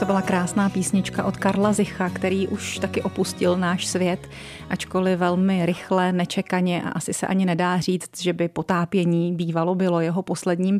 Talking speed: 165 wpm